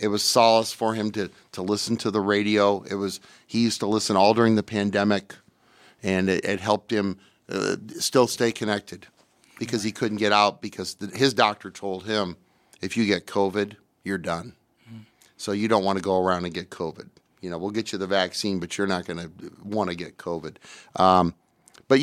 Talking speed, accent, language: 205 wpm, American, English